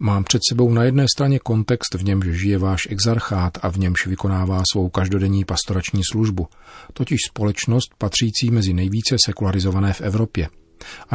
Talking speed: 155 wpm